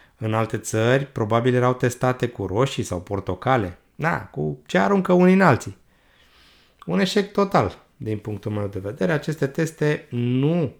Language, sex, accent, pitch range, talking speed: Romanian, male, native, 100-140 Hz, 155 wpm